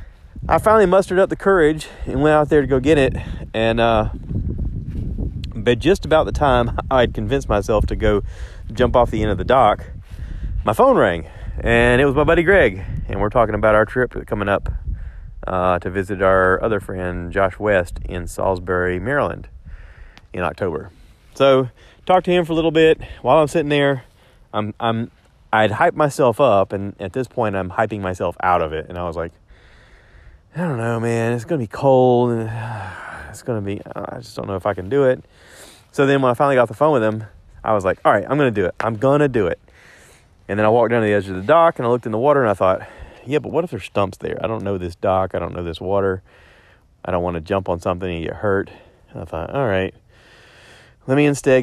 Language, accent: English, American